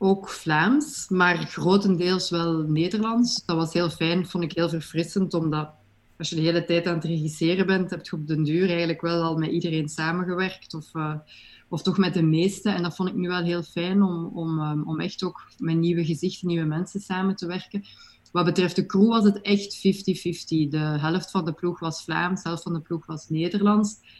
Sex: female